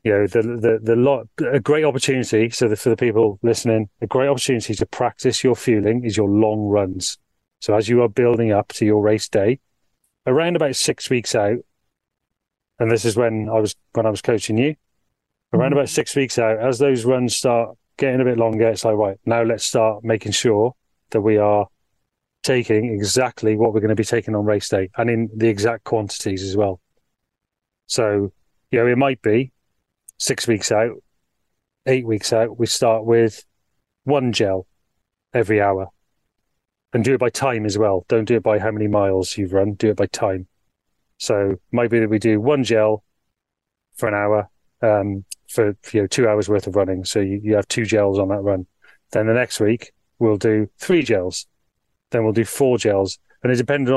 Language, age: English, 30-49